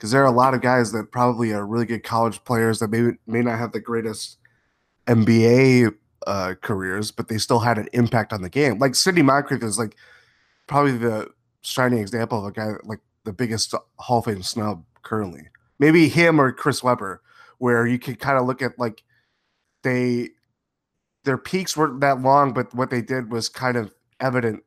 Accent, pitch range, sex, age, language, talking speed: American, 110-130 Hz, male, 20-39, English, 195 wpm